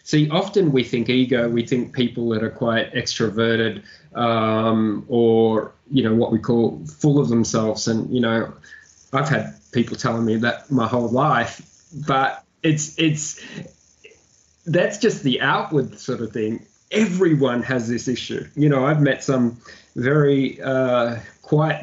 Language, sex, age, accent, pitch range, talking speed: English, male, 20-39, Australian, 115-145 Hz, 155 wpm